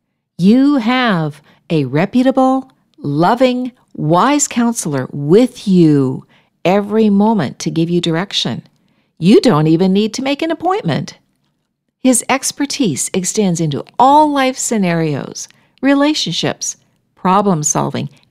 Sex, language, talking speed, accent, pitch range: female, English, 105 wpm, American, 160-245 Hz